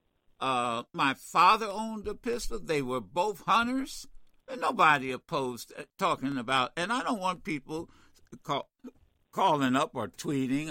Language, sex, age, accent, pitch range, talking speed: English, male, 60-79, American, 150-230 Hz, 140 wpm